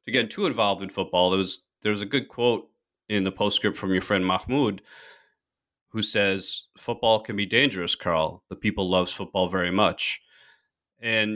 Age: 30-49